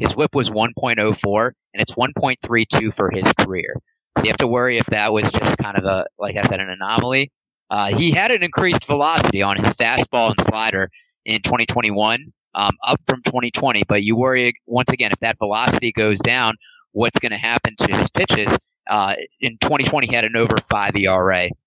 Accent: American